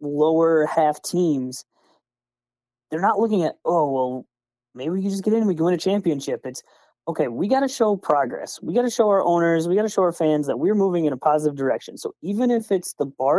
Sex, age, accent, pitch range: male, 30-49, American, 135-190 Hz